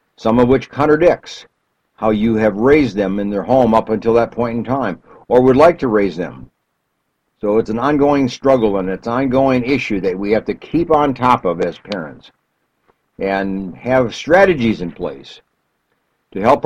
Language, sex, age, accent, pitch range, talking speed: English, male, 60-79, American, 105-135 Hz, 185 wpm